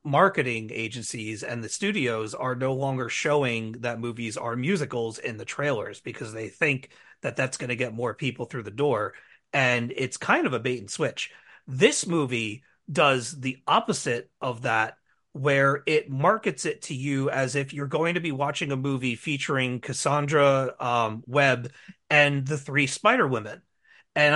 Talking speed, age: 170 wpm, 30-49